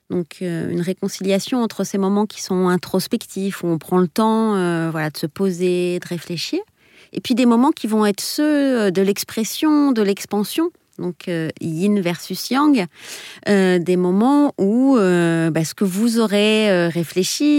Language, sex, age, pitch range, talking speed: French, female, 30-49, 175-235 Hz, 165 wpm